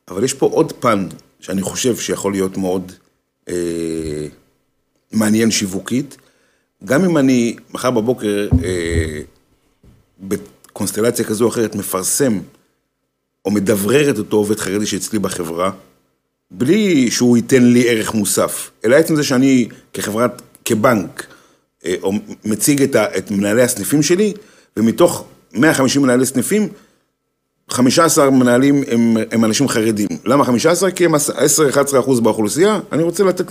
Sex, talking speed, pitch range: male, 140 wpm, 95-135 Hz